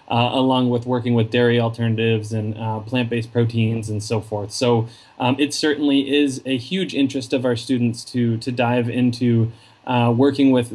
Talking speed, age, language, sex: 185 wpm, 20-39, English, male